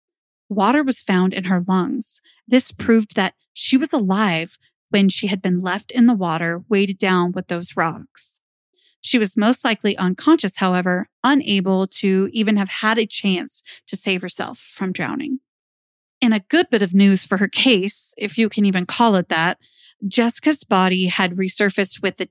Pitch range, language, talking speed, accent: 185-230 Hz, English, 175 wpm, American